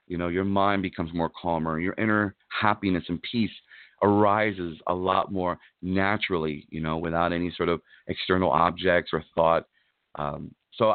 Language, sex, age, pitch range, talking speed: English, male, 40-59, 85-110 Hz, 160 wpm